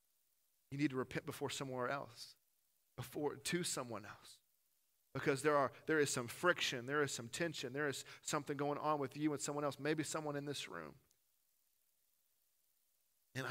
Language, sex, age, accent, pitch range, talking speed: English, male, 40-59, American, 120-145 Hz, 170 wpm